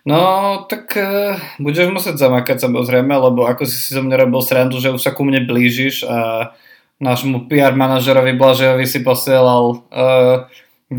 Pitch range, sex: 115-135 Hz, male